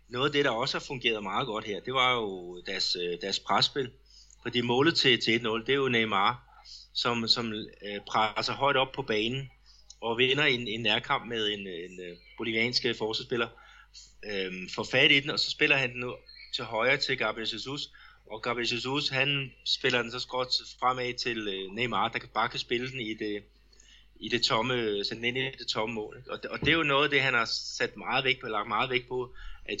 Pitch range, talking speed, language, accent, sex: 110-130 Hz, 200 wpm, Danish, native, male